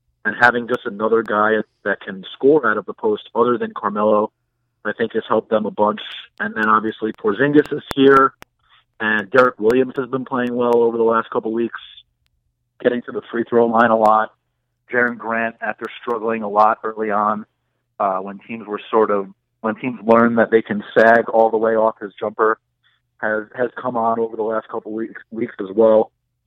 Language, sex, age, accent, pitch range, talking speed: English, male, 40-59, American, 110-125 Hz, 195 wpm